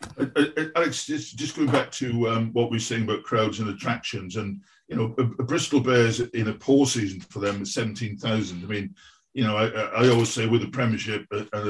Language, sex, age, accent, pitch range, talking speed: English, male, 50-69, British, 110-130 Hz, 225 wpm